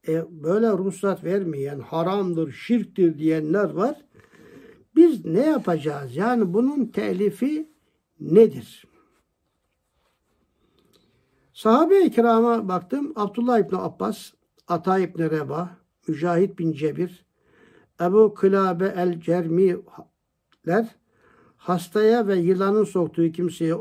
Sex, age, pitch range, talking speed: male, 60-79, 175-225 Hz, 90 wpm